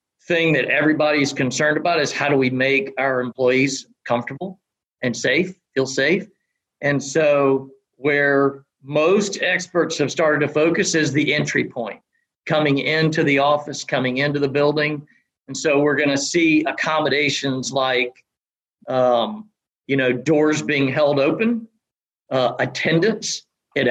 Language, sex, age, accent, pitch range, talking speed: English, male, 50-69, American, 135-165 Hz, 140 wpm